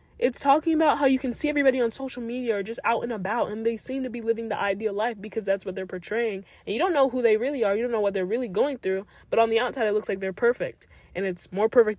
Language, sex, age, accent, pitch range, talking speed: English, female, 10-29, American, 210-255 Hz, 295 wpm